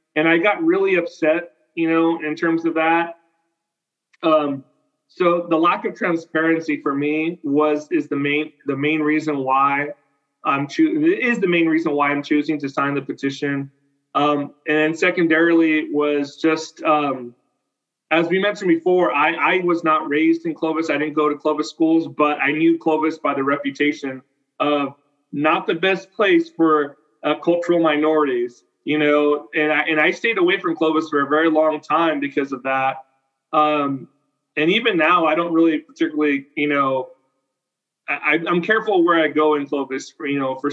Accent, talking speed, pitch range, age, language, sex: American, 175 wpm, 145-170 Hz, 30-49, English, male